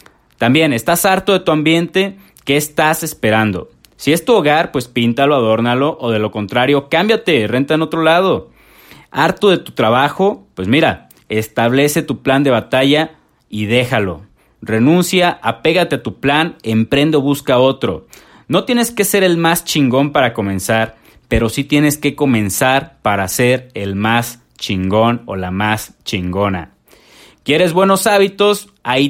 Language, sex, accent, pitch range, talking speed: Spanish, male, Mexican, 115-165 Hz, 155 wpm